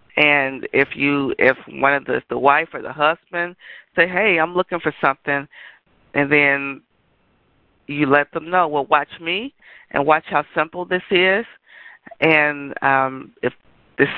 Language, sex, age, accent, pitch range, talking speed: English, female, 40-59, American, 140-170 Hz, 155 wpm